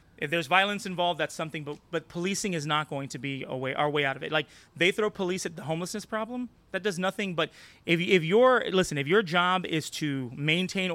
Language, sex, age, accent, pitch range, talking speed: English, male, 30-49, American, 145-185 Hz, 235 wpm